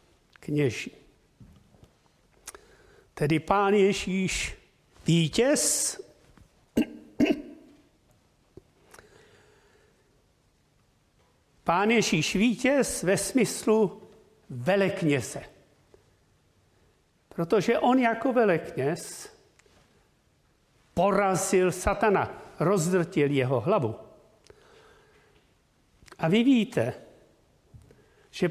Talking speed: 50 wpm